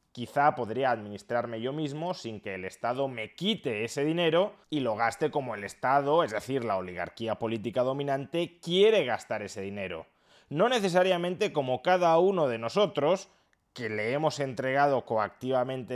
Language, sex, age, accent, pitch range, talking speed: Spanish, male, 30-49, Spanish, 120-170 Hz, 155 wpm